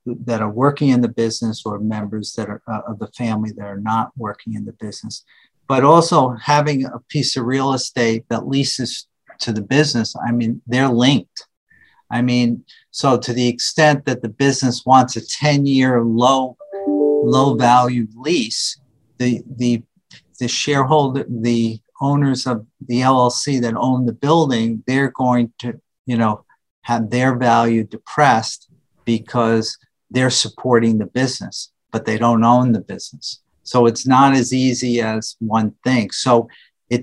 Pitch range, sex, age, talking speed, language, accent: 115-130 Hz, male, 50-69, 155 wpm, English, American